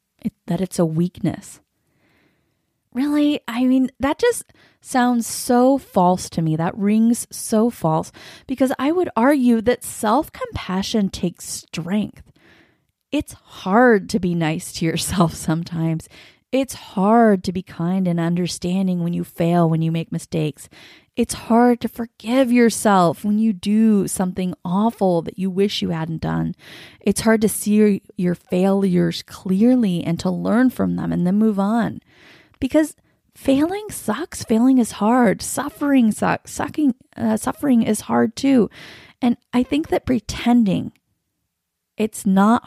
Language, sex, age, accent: English, female, 20-39, American